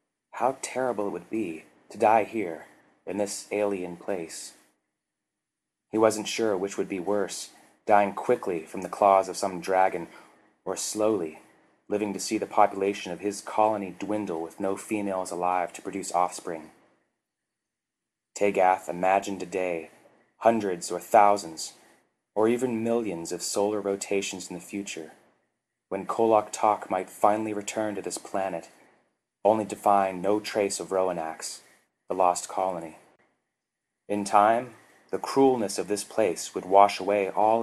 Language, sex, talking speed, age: English, male, 145 wpm, 30-49